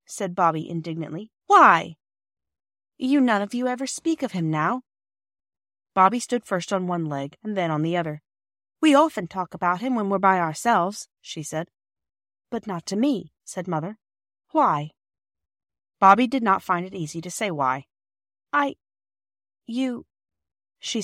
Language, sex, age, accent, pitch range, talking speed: English, female, 30-49, American, 155-235 Hz, 155 wpm